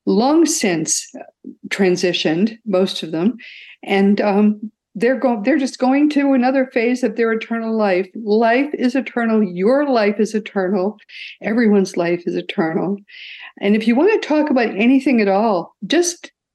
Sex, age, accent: female, 50-69, American